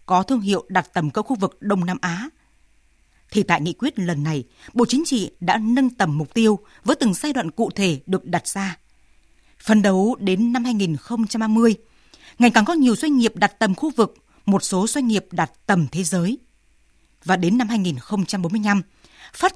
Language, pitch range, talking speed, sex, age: Vietnamese, 185-250 Hz, 190 wpm, female, 20-39